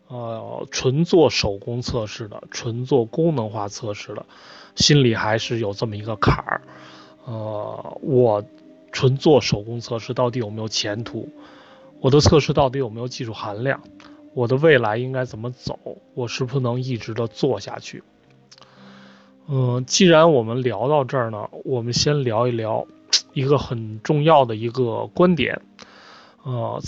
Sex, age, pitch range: male, 20-39, 110-140 Hz